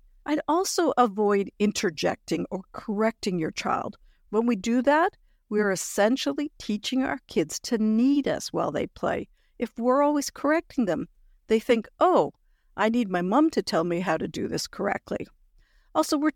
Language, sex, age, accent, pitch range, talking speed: English, female, 60-79, American, 195-275 Hz, 165 wpm